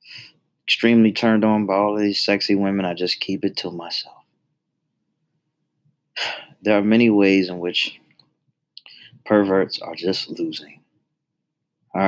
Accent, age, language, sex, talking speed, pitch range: American, 30-49, English, male, 125 wpm, 95-120 Hz